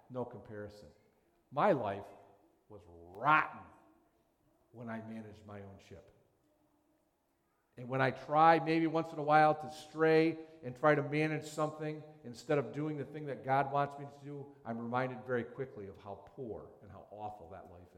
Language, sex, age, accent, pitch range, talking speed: English, male, 50-69, American, 105-145 Hz, 170 wpm